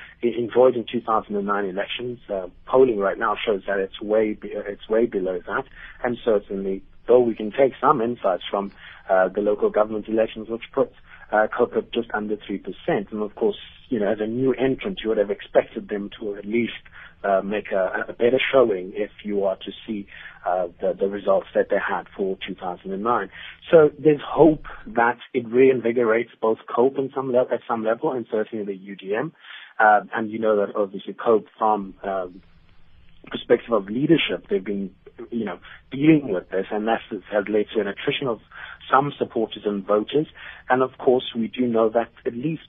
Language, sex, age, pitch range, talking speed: English, male, 30-49, 100-120 Hz, 185 wpm